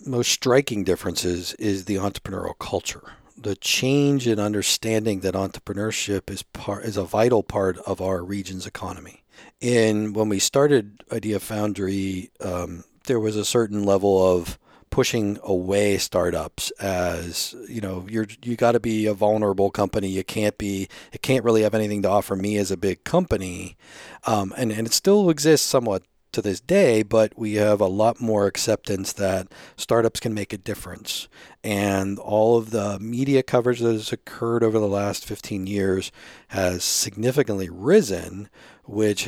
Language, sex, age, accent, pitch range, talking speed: English, male, 40-59, American, 95-115 Hz, 160 wpm